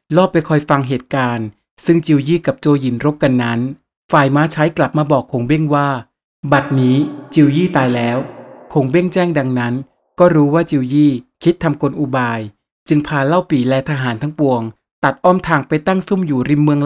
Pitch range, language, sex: 130-165 Hz, Thai, male